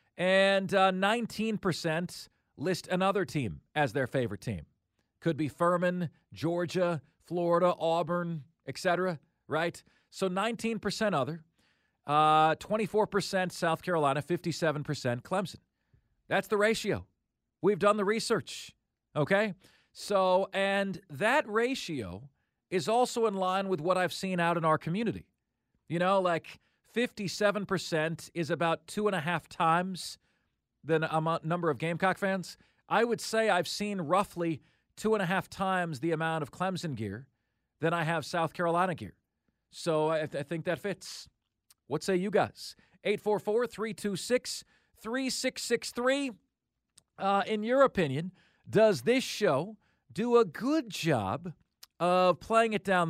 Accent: American